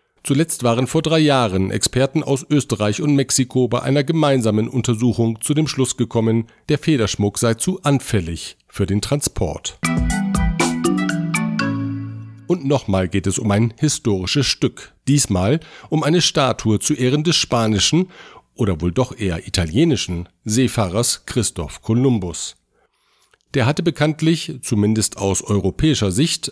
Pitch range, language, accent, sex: 105-140 Hz, German, German, male